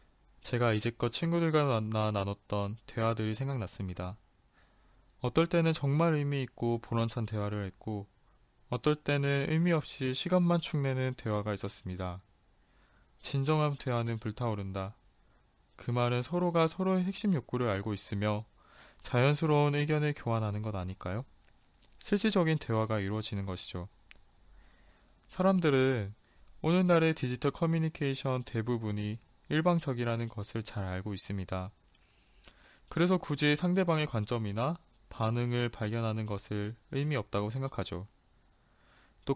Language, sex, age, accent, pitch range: Korean, male, 20-39, native, 105-155 Hz